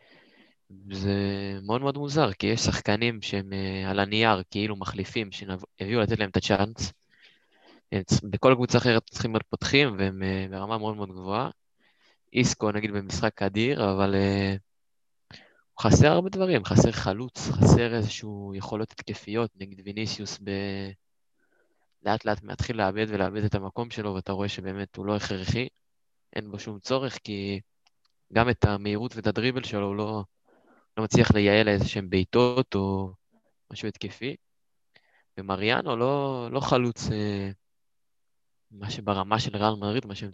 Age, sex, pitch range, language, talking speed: 20-39, male, 100-115 Hz, Hebrew, 145 wpm